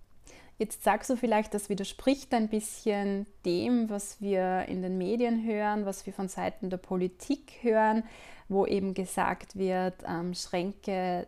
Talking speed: 150 wpm